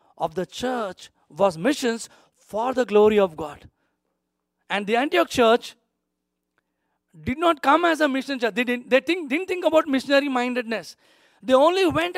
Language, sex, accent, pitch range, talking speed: English, male, Indian, 215-285 Hz, 165 wpm